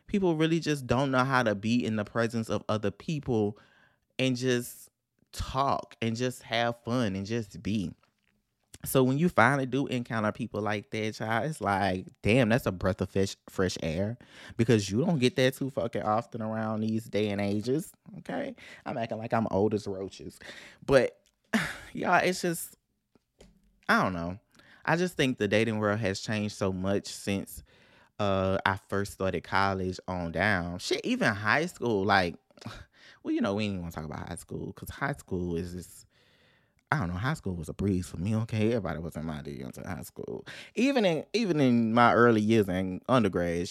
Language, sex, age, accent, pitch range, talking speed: English, male, 20-39, American, 95-125 Hz, 190 wpm